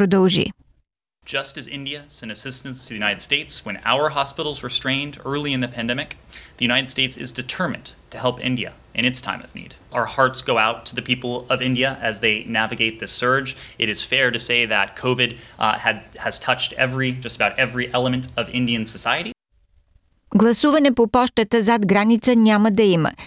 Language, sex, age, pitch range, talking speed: Bulgarian, male, 20-39, 130-225 Hz, 190 wpm